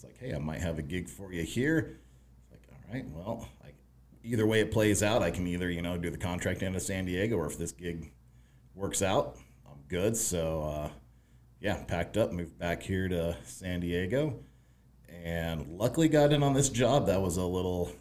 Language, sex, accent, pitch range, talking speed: English, male, American, 80-105 Hz, 210 wpm